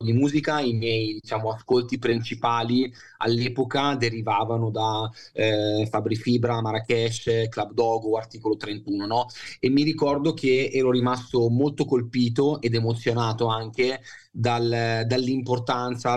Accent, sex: native, male